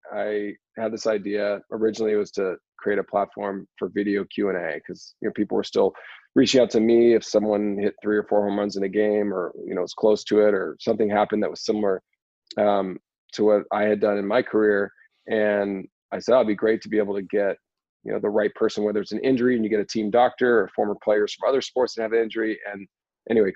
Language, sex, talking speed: English, male, 250 wpm